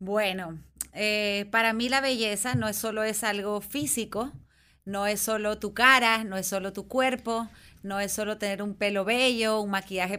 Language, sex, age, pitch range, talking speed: Spanish, female, 30-49, 200-230 Hz, 185 wpm